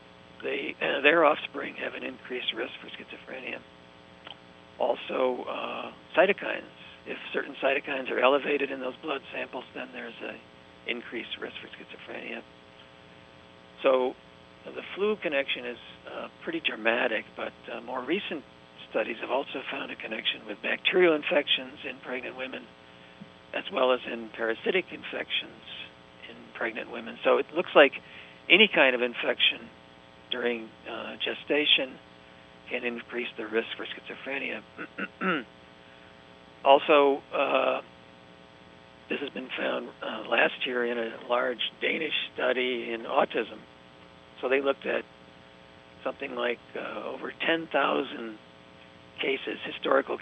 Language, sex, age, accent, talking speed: English, male, 50-69, American, 125 wpm